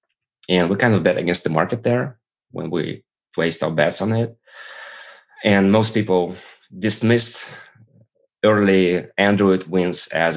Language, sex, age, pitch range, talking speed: English, male, 20-39, 80-100 Hz, 140 wpm